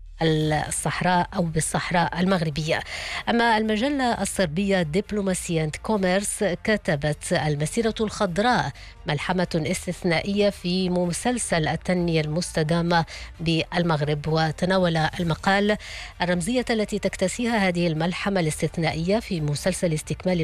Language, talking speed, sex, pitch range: English, 90 wpm, female, 160-195 Hz